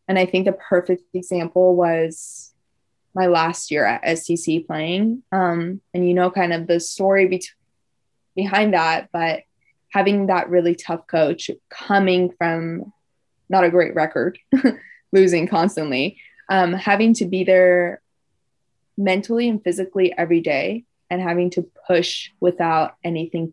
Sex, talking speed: female, 135 wpm